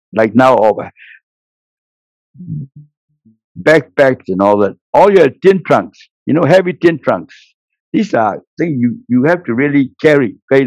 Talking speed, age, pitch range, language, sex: 140 wpm, 60-79, 110-150 Hz, Hindi, male